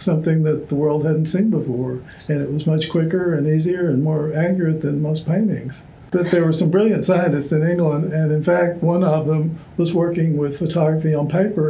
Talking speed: 205 wpm